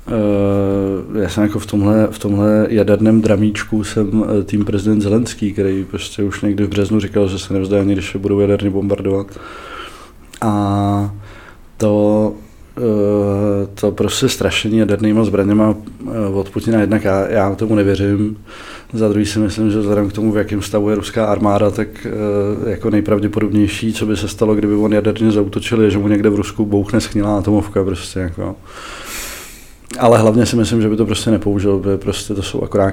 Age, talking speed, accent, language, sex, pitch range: 20-39, 170 wpm, native, Czech, male, 100-110 Hz